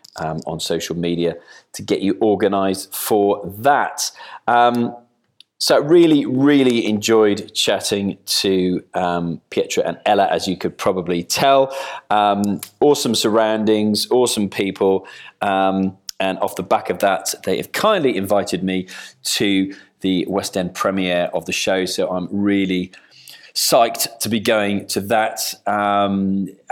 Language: English